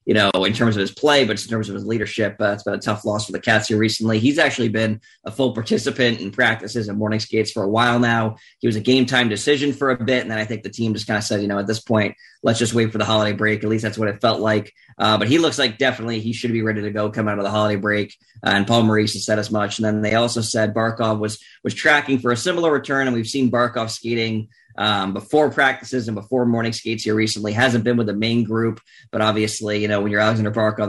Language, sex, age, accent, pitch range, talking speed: English, male, 20-39, American, 105-120 Hz, 280 wpm